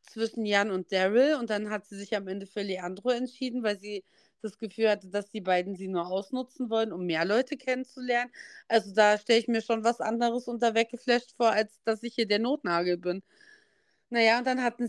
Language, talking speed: German, 210 wpm